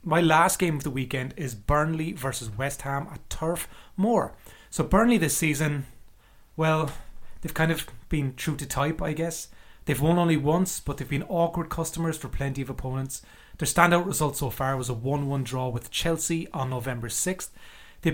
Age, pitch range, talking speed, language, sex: 30-49, 135-165 Hz, 185 wpm, English, male